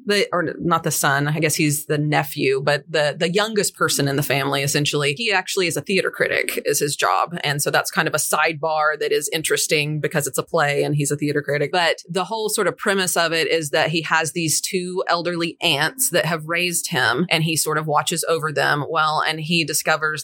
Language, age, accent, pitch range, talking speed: English, 30-49, American, 155-195 Hz, 230 wpm